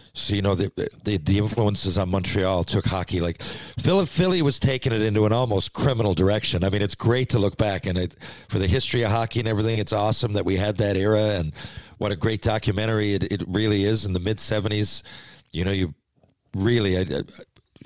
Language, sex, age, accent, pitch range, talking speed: English, male, 50-69, American, 95-115 Hz, 205 wpm